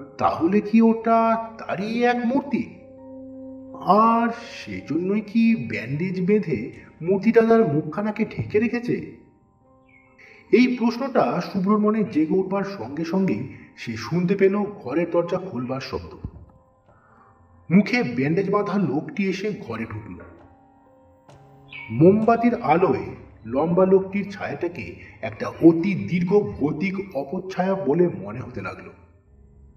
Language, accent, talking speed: Bengali, native, 100 wpm